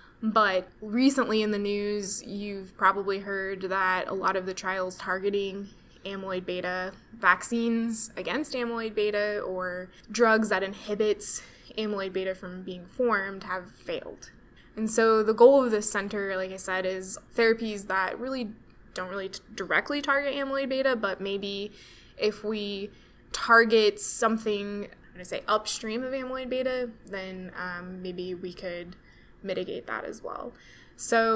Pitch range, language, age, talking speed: 190-220 Hz, English, 10-29, 145 wpm